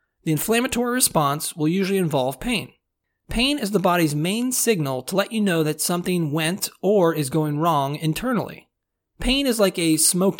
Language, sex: English, male